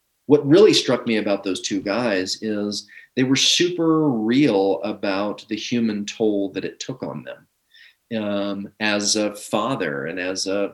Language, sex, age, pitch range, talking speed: English, male, 40-59, 100-115 Hz, 160 wpm